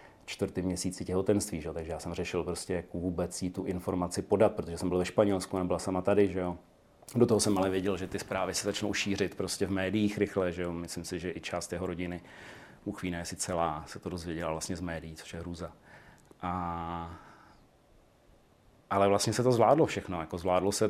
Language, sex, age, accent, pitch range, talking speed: Czech, male, 40-59, native, 90-100 Hz, 200 wpm